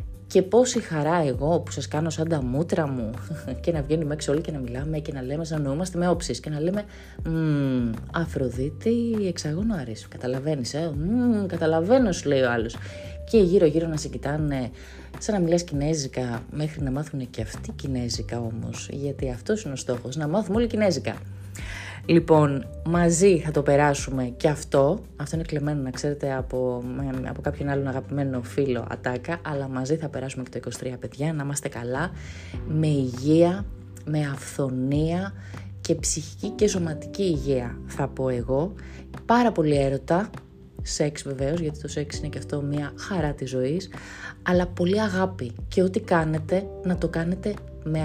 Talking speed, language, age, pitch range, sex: 165 wpm, Greek, 20-39, 125-165 Hz, female